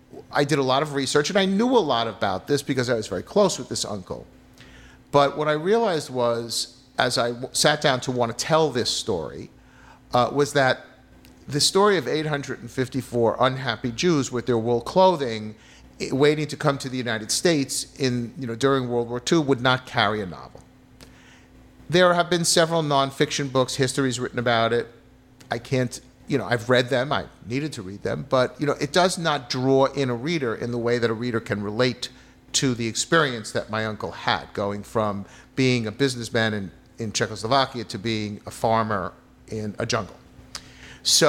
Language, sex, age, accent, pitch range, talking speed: English, male, 40-59, American, 115-140 Hz, 195 wpm